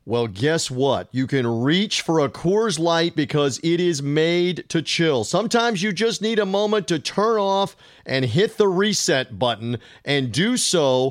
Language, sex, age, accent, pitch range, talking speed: English, male, 40-59, American, 140-200 Hz, 180 wpm